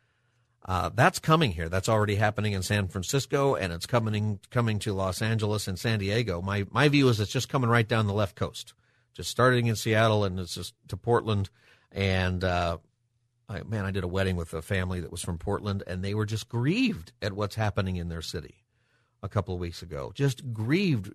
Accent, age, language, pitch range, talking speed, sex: American, 50-69, English, 100-125 Hz, 205 wpm, male